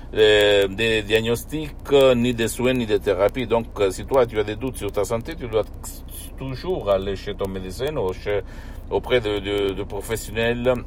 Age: 60-79